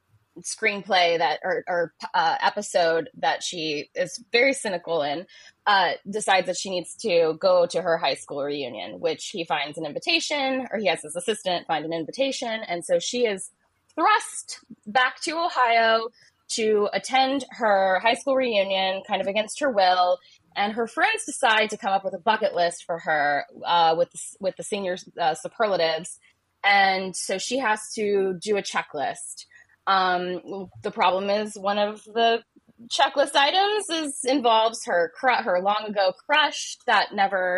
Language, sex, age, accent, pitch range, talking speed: English, female, 20-39, American, 175-235 Hz, 165 wpm